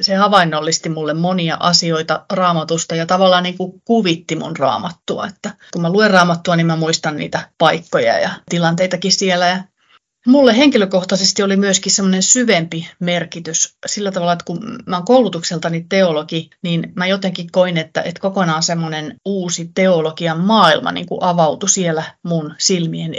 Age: 30-49